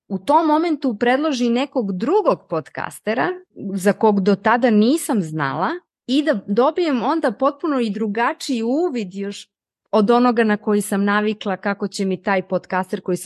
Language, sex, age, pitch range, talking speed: Croatian, female, 30-49, 185-240 Hz, 150 wpm